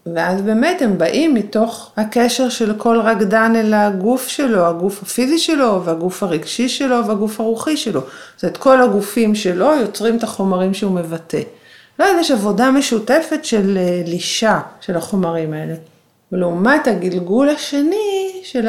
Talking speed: 140 wpm